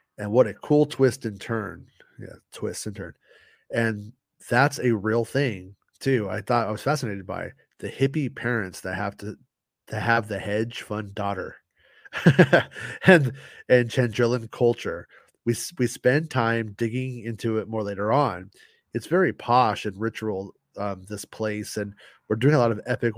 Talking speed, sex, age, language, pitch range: 170 wpm, male, 30-49, English, 105-145 Hz